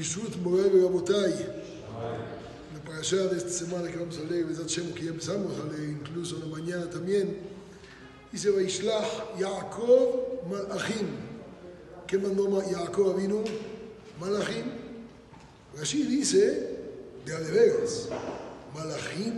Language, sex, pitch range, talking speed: Spanish, male, 175-230 Hz, 115 wpm